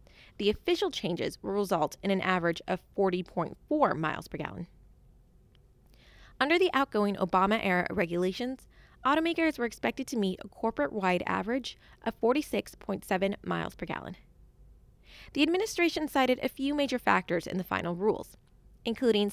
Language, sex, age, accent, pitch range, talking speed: English, female, 20-39, American, 190-275 Hz, 135 wpm